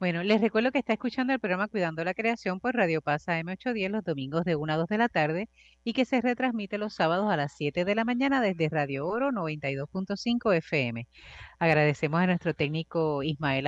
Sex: female